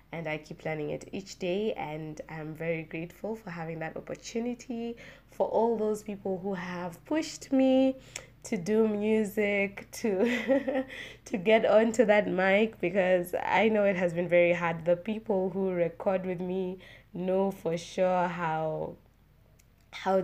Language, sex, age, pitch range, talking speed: English, female, 20-39, 165-215 Hz, 150 wpm